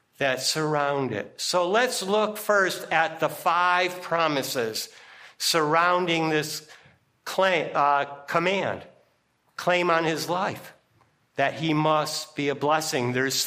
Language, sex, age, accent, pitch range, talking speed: English, male, 50-69, American, 155-205 Hz, 115 wpm